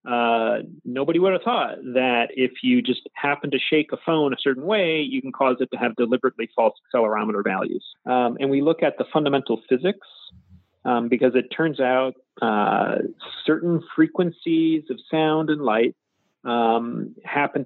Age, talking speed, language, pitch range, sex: 40-59, 165 wpm, English, 125-160 Hz, male